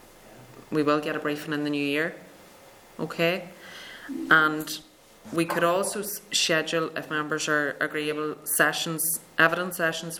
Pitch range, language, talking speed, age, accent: 145-155 Hz, English, 130 wpm, 20-39, Irish